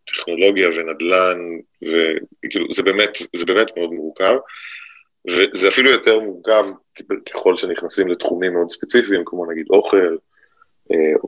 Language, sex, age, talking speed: Hebrew, male, 30-49, 115 wpm